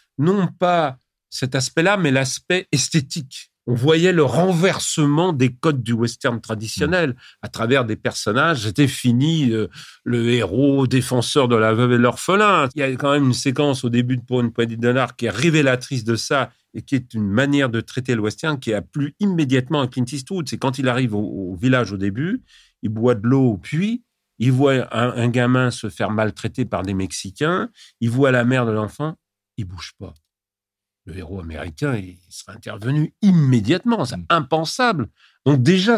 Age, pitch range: 50-69, 120-155 Hz